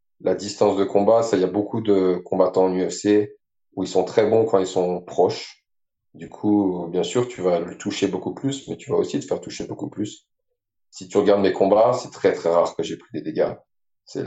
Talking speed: 235 wpm